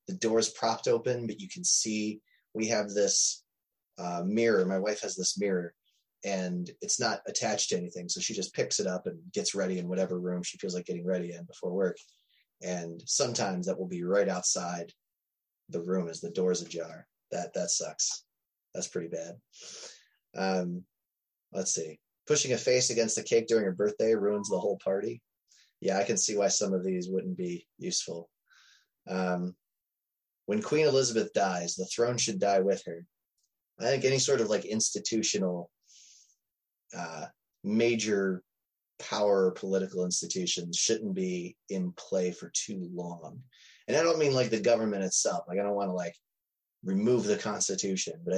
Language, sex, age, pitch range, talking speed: English, male, 20-39, 90-115 Hz, 170 wpm